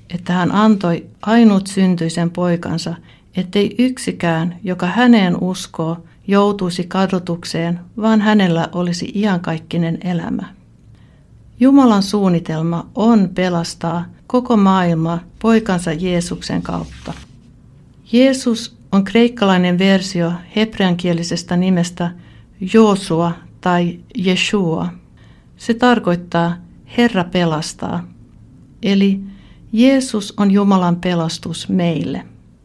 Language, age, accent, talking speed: Finnish, 60-79, native, 85 wpm